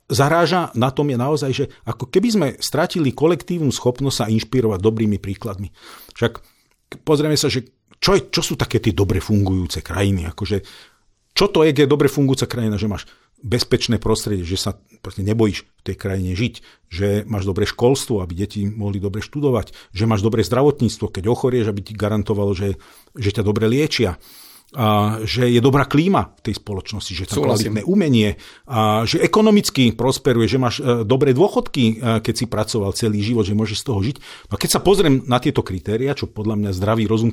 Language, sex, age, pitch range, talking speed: Slovak, male, 50-69, 105-130 Hz, 185 wpm